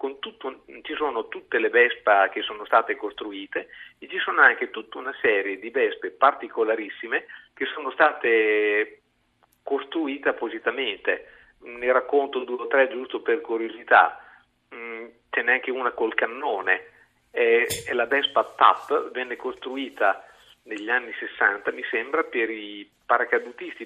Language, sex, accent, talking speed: Italian, male, native, 140 wpm